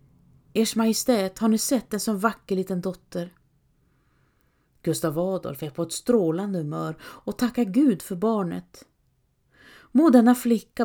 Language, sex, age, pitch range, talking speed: Swedish, female, 40-59, 180-235 Hz, 135 wpm